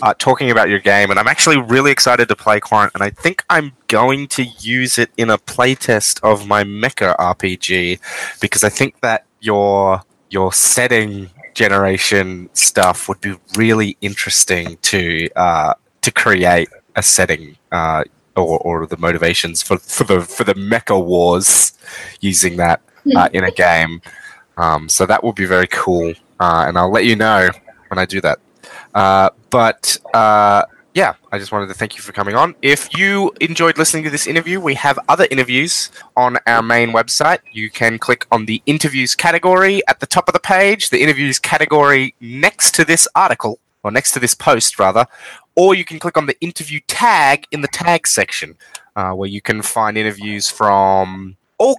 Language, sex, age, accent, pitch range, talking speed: English, male, 20-39, Australian, 95-135 Hz, 180 wpm